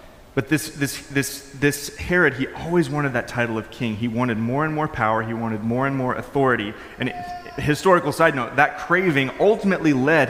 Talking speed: 200 wpm